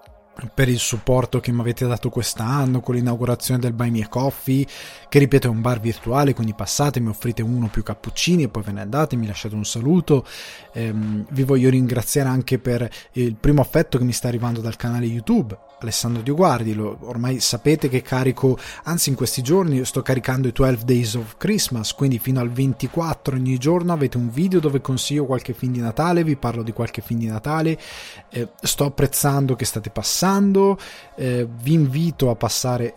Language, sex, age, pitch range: Italian, male, 20-39, 115-140 Hz